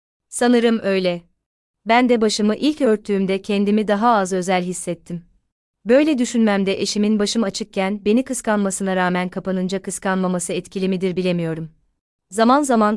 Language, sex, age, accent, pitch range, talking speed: Turkish, female, 30-49, native, 185-220 Hz, 125 wpm